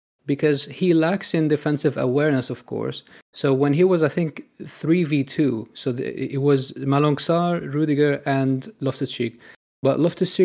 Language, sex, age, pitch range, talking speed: English, male, 30-49, 130-155 Hz, 140 wpm